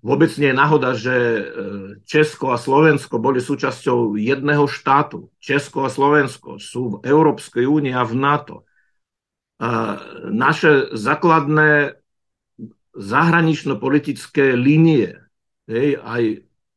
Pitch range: 130-155 Hz